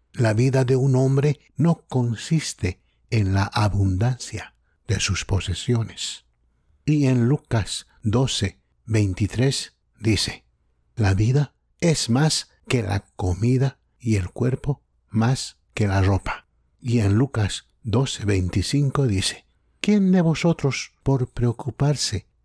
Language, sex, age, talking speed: English, male, 60-79, 120 wpm